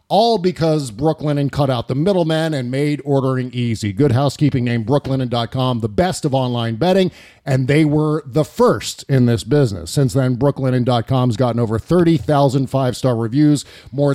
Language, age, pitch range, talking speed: English, 40-59, 130-170 Hz, 170 wpm